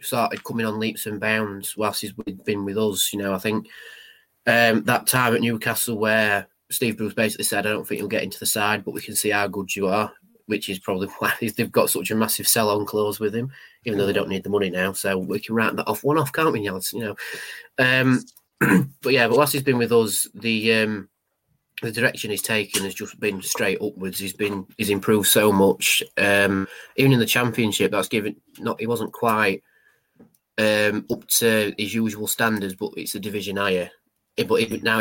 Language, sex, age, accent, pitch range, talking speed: English, male, 20-39, British, 100-125 Hz, 215 wpm